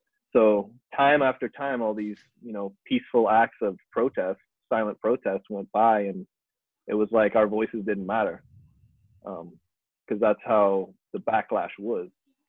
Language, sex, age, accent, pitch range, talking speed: English, male, 20-39, American, 100-115 Hz, 150 wpm